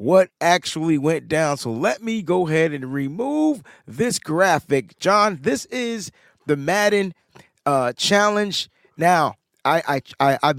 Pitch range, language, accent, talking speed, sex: 145-200 Hz, English, American, 140 wpm, male